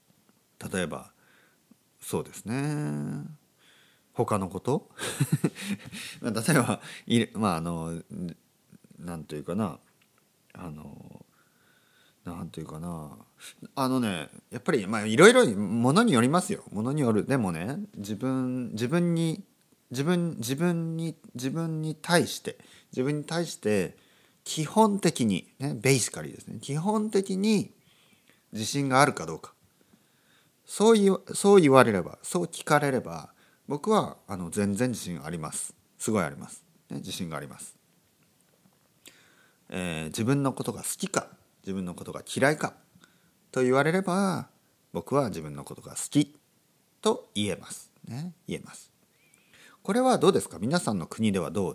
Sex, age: male, 40-59